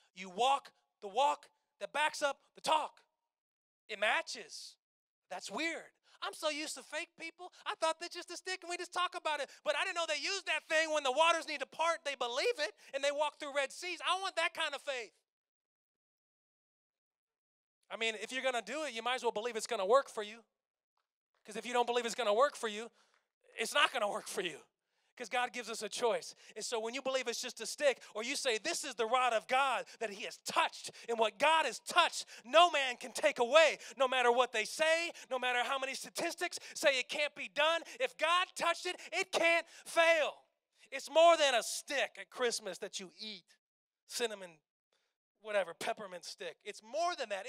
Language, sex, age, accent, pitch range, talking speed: English, male, 30-49, American, 235-320 Hz, 220 wpm